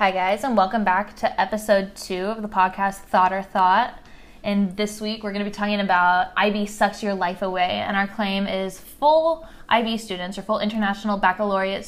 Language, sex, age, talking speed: English, female, 10-29, 195 wpm